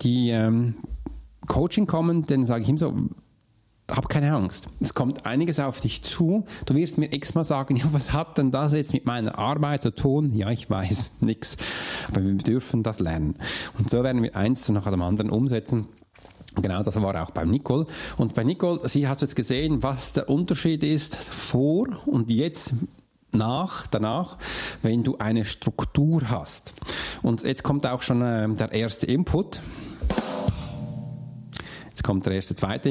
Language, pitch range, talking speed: German, 110-145 Hz, 170 wpm